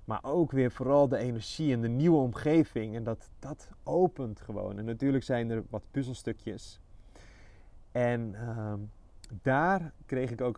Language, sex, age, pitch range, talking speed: Dutch, male, 30-49, 100-120 Hz, 155 wpm